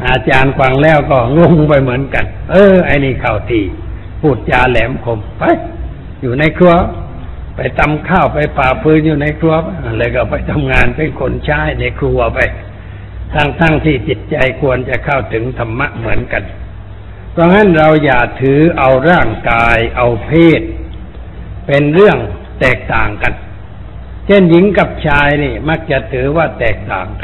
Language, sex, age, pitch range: Thai, male, 60-79, 100-150 Hz